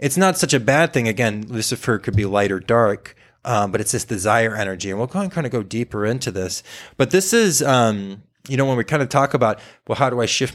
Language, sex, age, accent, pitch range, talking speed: English, male, 20-39, American, 95-115 Hz, 260 wpm